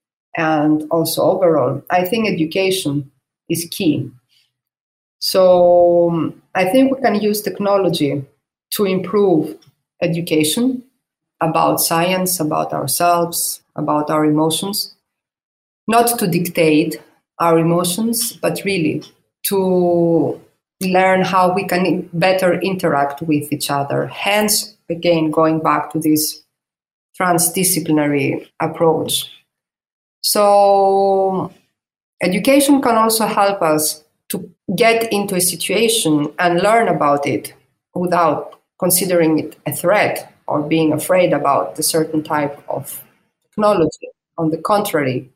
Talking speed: 110 wpm